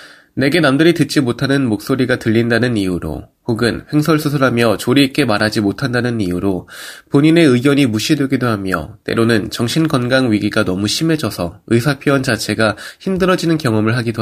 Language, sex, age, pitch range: Korean, male, 20-39, 105-150 Hz